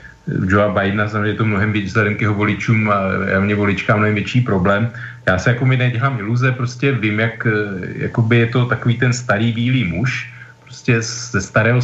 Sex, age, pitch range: male, 40-59, 110-125 Hz